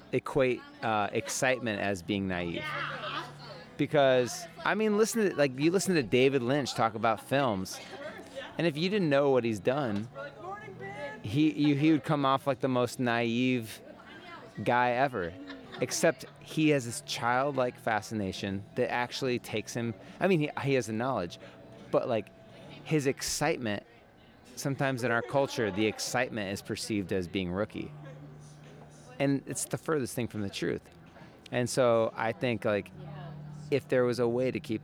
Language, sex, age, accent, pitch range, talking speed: English, male, 30-49, American, 100-140 Hz, 160 wpm